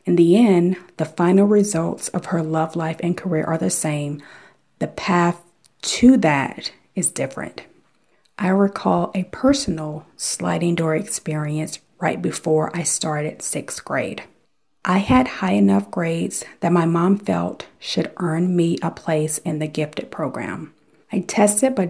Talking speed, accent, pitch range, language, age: 150 wpm, American, 155-190 Hz, English, 40-59